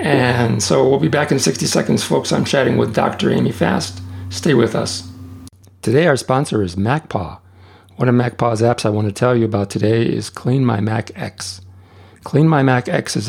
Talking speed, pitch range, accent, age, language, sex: 200 wpm, 100-125 Hz, American, 50-69, English, male